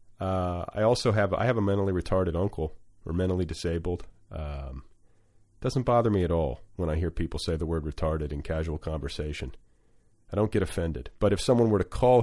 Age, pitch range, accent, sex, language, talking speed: 40-59, 85-105 Hz, American, male, English, 195 wpm